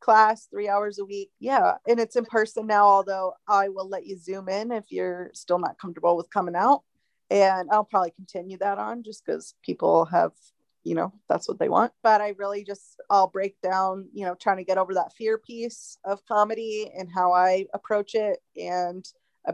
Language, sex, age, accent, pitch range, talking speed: English, female, 20-39, American, 180-210 Hz, 205 wpm